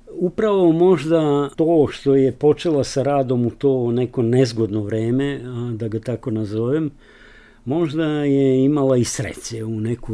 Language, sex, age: Slovak, male, 50-69